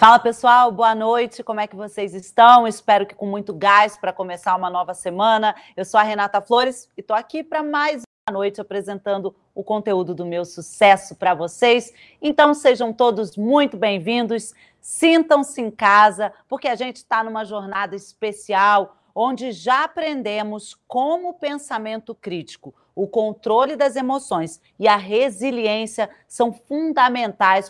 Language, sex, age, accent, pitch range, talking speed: Portuguese, female, 40-59, Brazilian, 200-260 Hz, 150 wpm